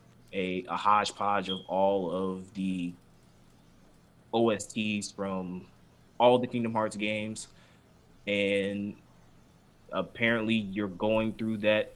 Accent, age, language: American, 20-39, English